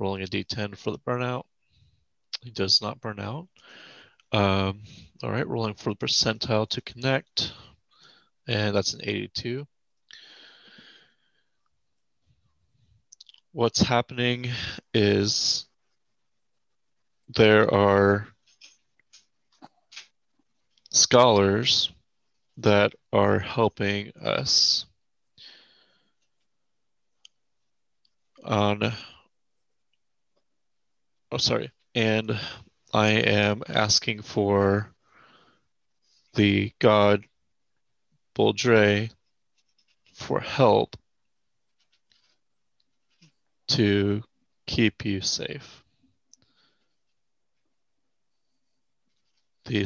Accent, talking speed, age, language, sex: American, 65 wpm, 30-49, English, male